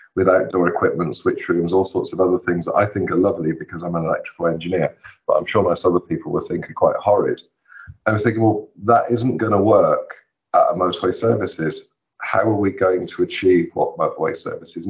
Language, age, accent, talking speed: English, 40-59, British, 200 wpm